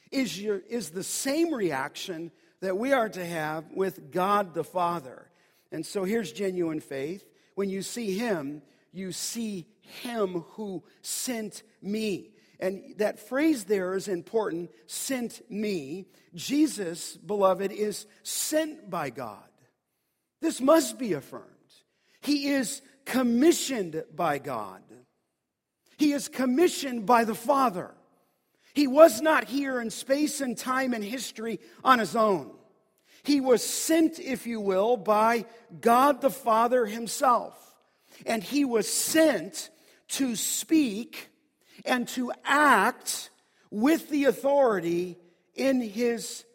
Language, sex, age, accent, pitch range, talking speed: English, male, 50-69, American, 190-265 Hz, 125 wpm